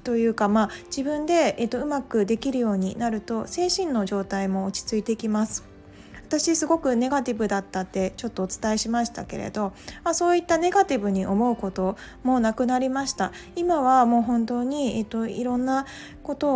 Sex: female